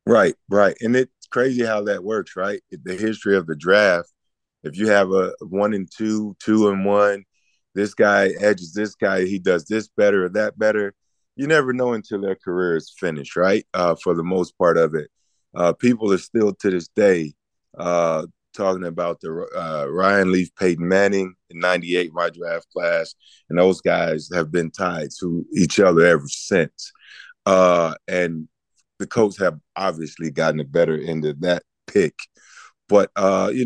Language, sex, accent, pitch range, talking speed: English, male, American, 85-105 Hz, 180 wpm